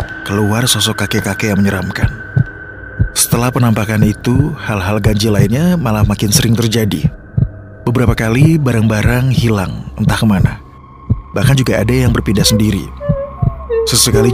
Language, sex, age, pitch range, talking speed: Indonesian, male, 20-39, 95-115 Hz, 115 wpm